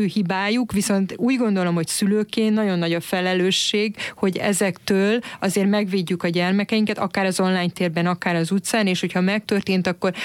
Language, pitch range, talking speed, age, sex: Hungarian, 175-200 Hz, 160 wpm, 30-49, female